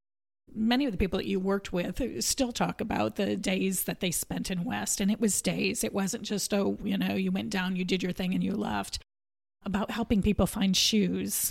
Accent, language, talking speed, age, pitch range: American, English, 225 wpm, 40-59, 185-220 Hz